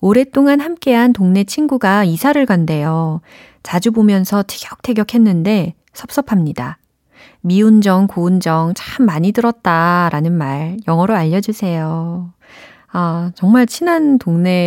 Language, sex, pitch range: Korean, female, 165-225 Hz